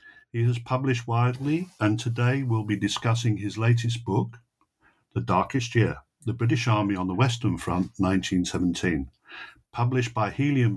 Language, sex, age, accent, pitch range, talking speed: English, male, 60-79, British, 100-125 Hz, 145 wpm